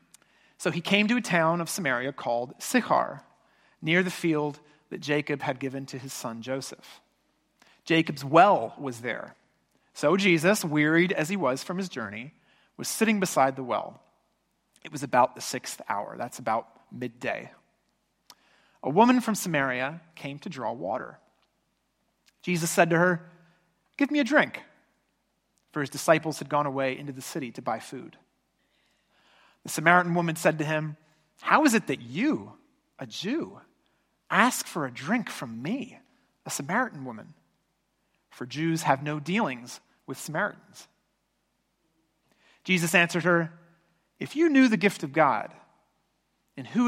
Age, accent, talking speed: 40-59, American, 150 wpm